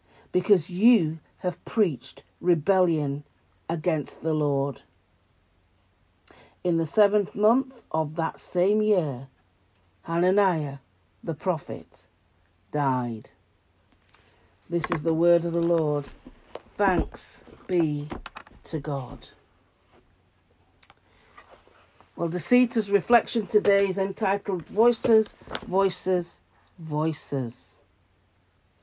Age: 50-69